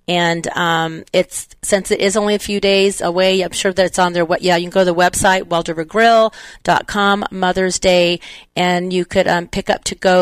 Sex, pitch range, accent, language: female, 165-195 Hz, American, English